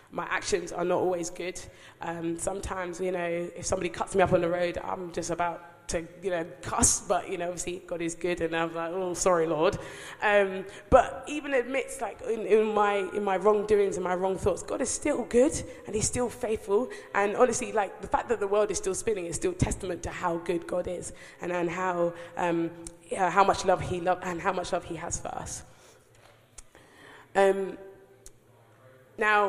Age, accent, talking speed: 20-39, British, 205 wpm